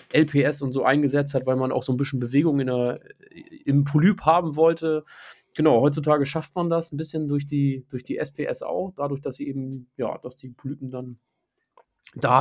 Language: German